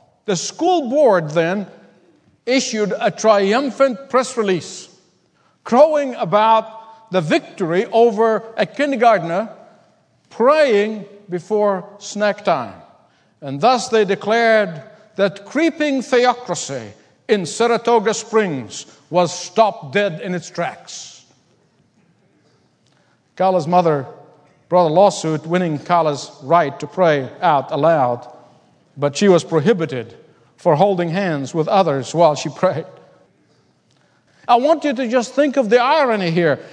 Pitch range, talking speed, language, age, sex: 175-255 Hz, 115 wpm, English, 50-69, male